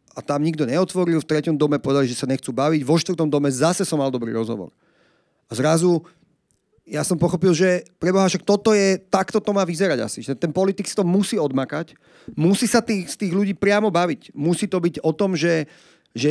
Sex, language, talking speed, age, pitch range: male, Slovak, 210 wpm, 40-59, 145-180 Hz